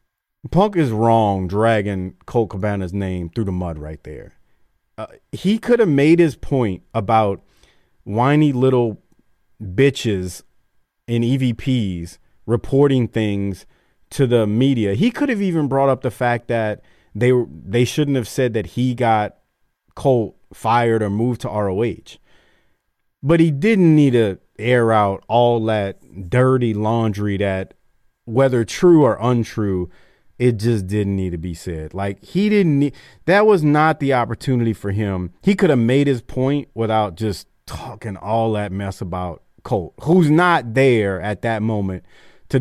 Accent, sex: American, male